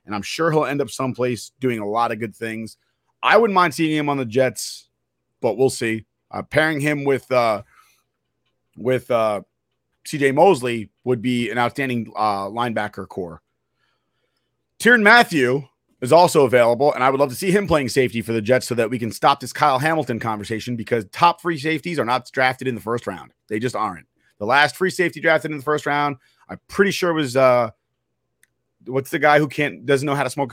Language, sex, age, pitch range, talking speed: English, male, 30-49, 120-155 Hz, 205 wpm